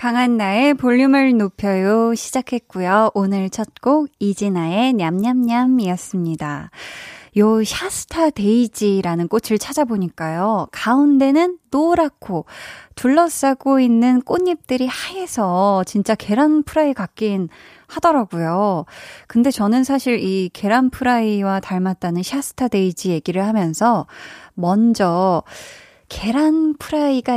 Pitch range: 190-265 Hz